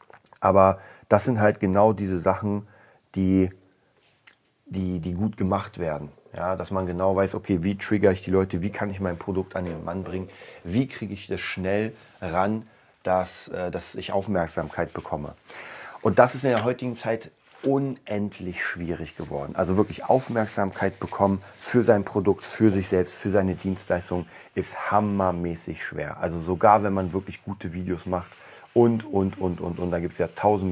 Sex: male